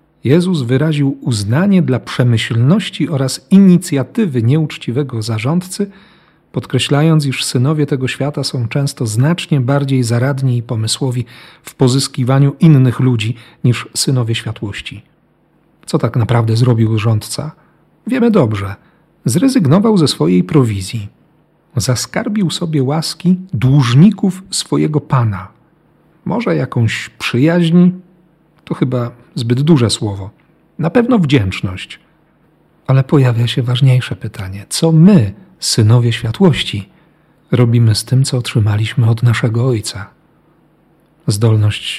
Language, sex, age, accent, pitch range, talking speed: Polish, male, 40-59, native, 120-160 Hz, 105 wpm